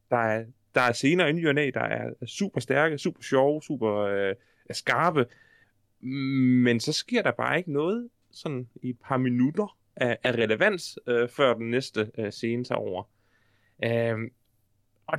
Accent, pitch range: native, 115-155 Hz